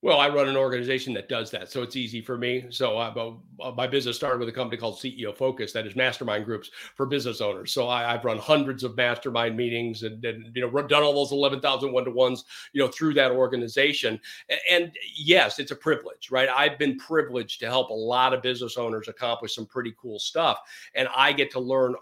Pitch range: 125-140 Hz